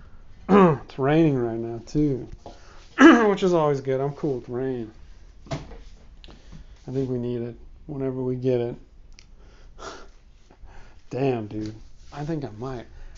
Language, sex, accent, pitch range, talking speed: English, male, American, 95-150 Hz, 125 wpm